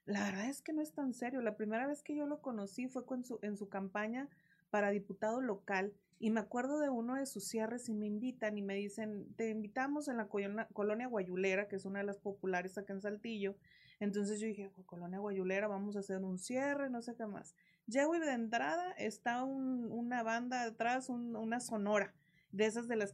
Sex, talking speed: female, 220 wpm